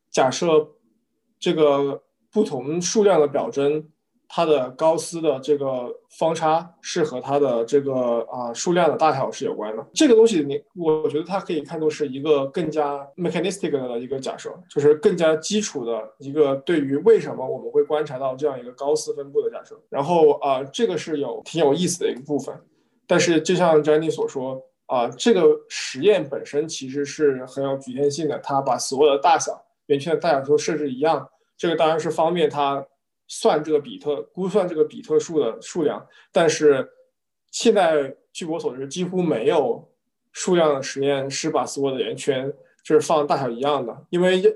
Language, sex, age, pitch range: Chinese, male, 20-39, 140-195 Hz